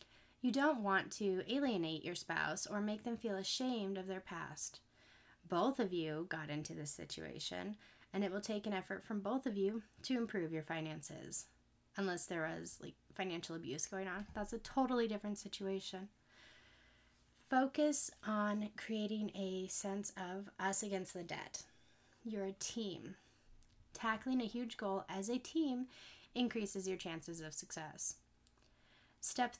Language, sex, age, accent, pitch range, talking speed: English, female, 20-39, American, 175-220 Hz, 150 wpm